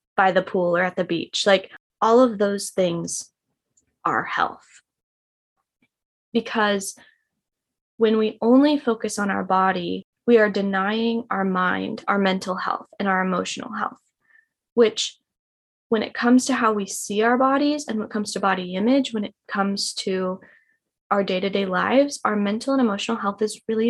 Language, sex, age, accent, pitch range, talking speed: English, female, 20-39, American, 195-235 Hz, 165 wpm